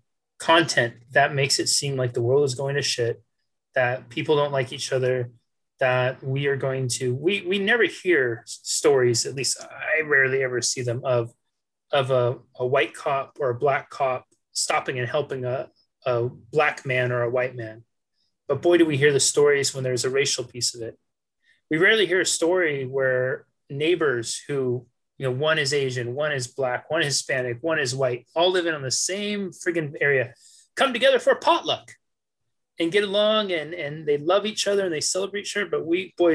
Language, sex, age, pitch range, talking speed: English, male, 30-49, 125-170 Hz, 200 wpm